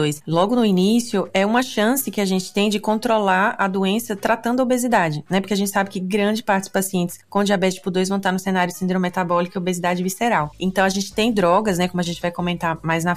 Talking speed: 245 wpm